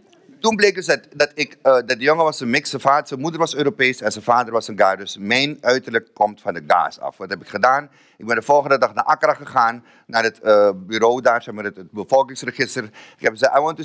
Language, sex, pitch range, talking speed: Dutch, male, 110-150 Hz, 260 wpm